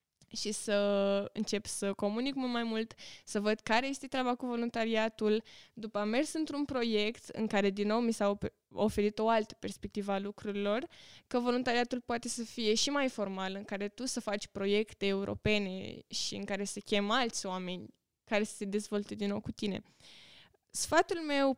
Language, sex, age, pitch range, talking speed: Romanian, female, 20-39, 205-245 Hz, 175 wpm